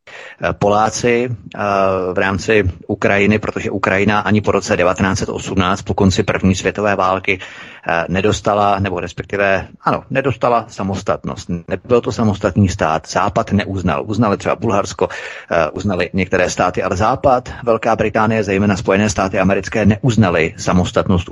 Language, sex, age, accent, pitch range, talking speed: Czech, male, 30-49, native, 95-115 Hz, 120 wpm